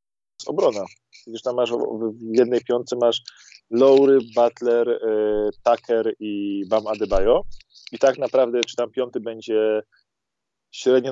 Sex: male